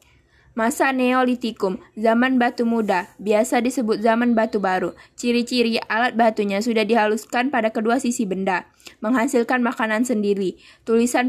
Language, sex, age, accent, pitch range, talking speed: Indonesian, female, 10-29, native, 220-245 Hz, 120 wpm